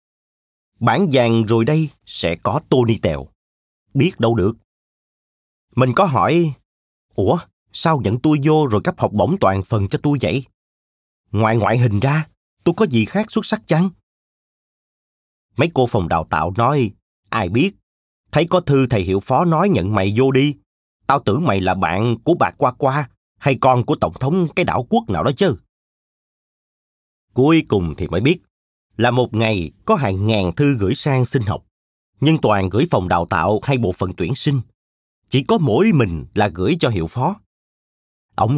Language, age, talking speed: Vietnamese, 30-49, 180 wpm